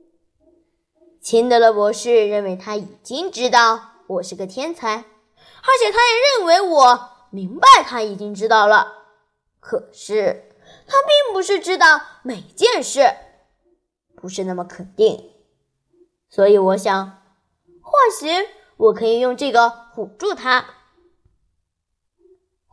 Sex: female